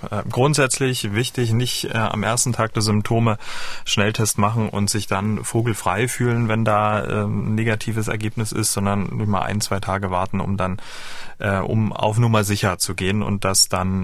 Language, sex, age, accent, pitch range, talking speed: German, male, 30-49, German, 105-125 Hz, 175 wpm